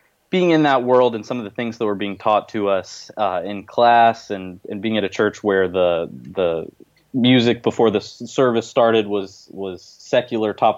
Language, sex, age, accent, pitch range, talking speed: English, male, 20-39, American, 100-115 Hz, 205 wpm